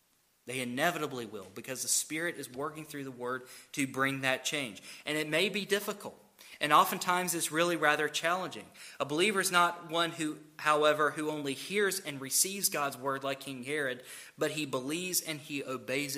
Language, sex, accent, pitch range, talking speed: English, male, American, 130-155 Hz, 180 wpm